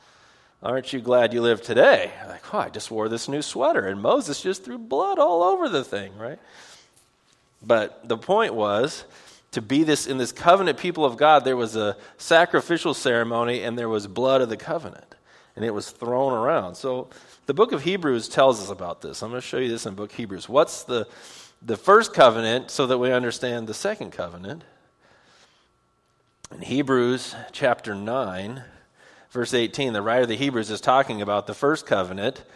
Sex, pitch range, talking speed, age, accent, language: male, 110-140 Hz, 190 wpm, 40-59, American, English